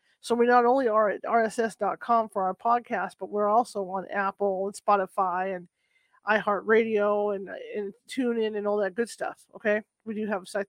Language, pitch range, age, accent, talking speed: English, 205-235 Hz, 40-59, American, 185 wpm